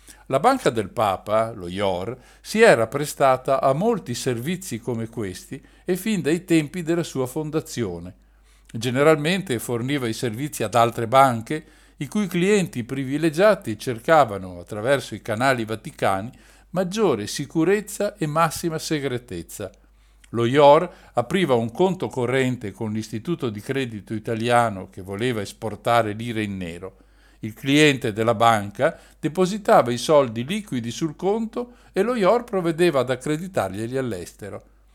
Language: Italian